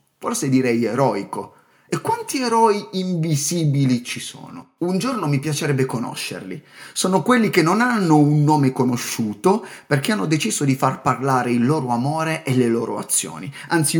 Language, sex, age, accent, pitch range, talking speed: Italian, male, 30-49, native, 125-190 Hz, 155 wpm